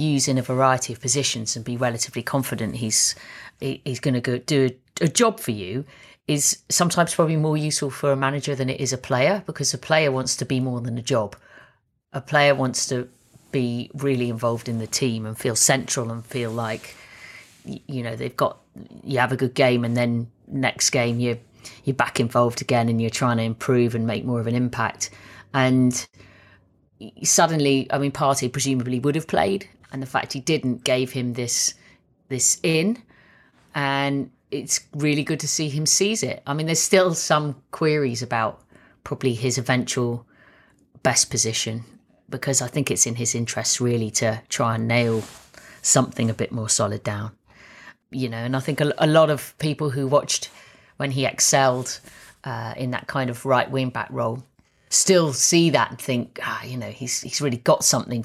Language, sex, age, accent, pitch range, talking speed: English, female, 30-49, British, 120-140 Hz, 190 wpm